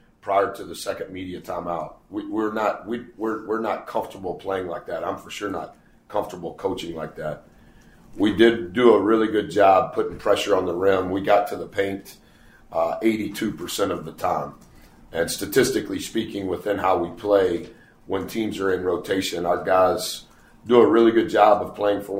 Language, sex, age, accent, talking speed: English, male, 50-69, American, 185 wpm